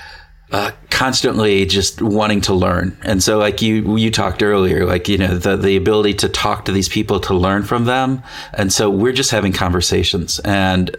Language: English